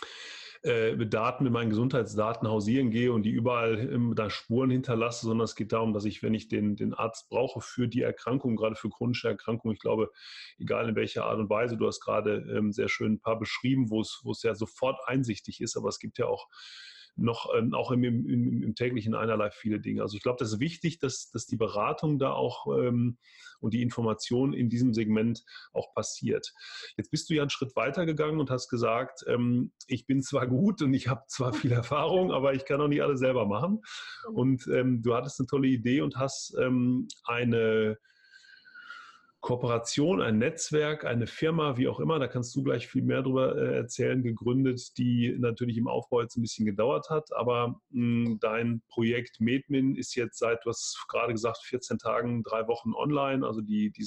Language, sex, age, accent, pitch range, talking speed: German, male, 30-49, German, 115-135 Hz, 200 wpm